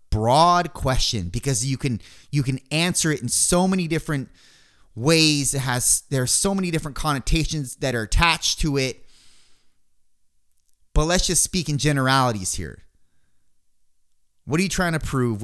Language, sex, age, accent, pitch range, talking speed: English, male, 30-49, American, 100-140 Hz, 155 wpm